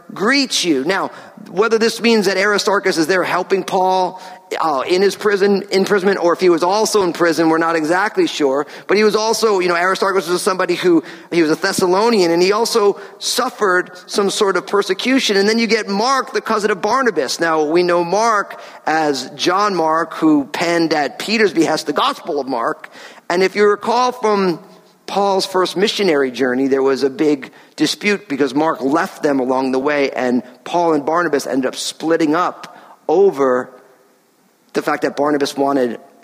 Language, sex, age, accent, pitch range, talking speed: English, male, 40-59, American, 155-205 Hz, 180 wpm